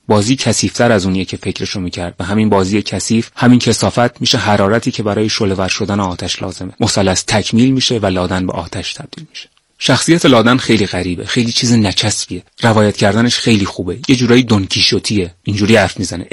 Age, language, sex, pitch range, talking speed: 30-49, Persian, male, 95-115 Hz, 175 wpm